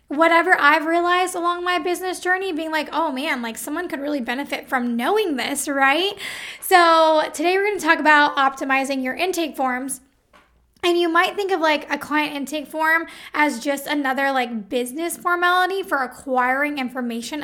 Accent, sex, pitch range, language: American, female, 270-340 Hz, English